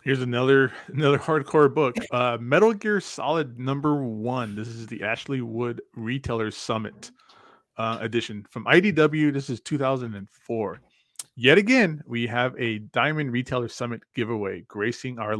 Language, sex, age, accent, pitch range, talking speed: English, male, 30-49, American, 110-150 Hz, 140 wpm